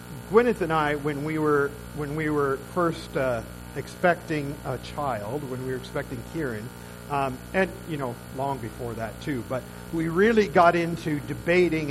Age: 50-69